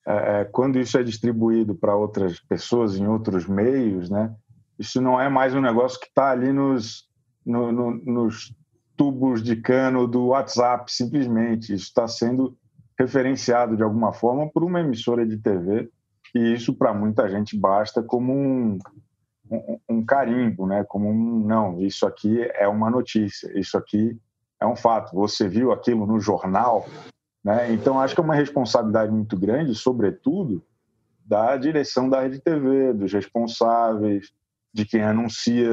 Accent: Brazilian